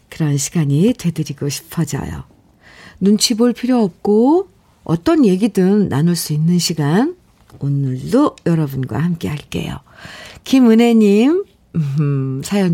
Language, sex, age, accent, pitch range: Korean, female, 50-69, native, 150-215 Hz